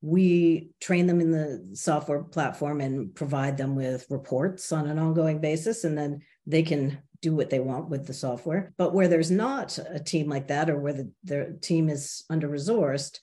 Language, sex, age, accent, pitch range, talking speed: English, female, 50-69, American, 140-175 Hz, 185 wpm